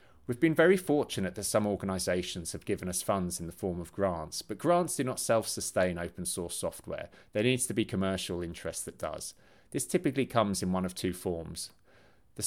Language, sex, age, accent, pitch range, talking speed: English, male, 30-49, British, 95-120 Hz, 195 wpm